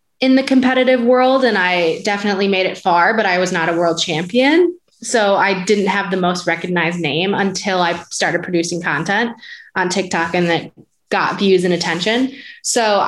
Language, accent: English, American